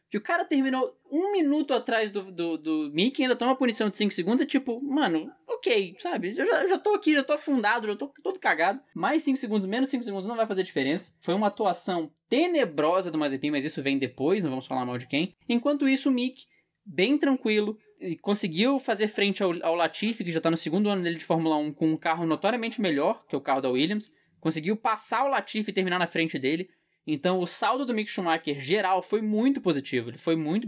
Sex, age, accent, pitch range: male, 10-29, Brazilian, 160-235 Hz